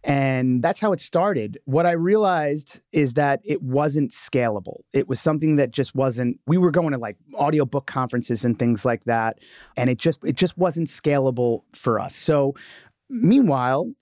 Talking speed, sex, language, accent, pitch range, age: 175 wpm, male, English, American, 120-155 Hz, 30-49